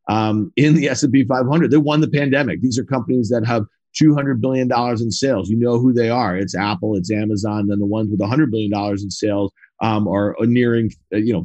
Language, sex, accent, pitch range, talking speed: English, male, American, 105-140 Hz, 210 wpm